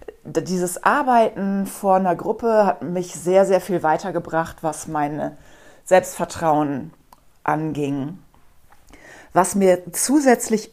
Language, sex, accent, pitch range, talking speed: German, female, German, 170-210 Hz, 100 wpm